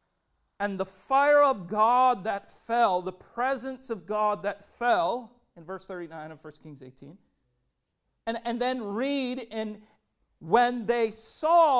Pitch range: 185-250 Hz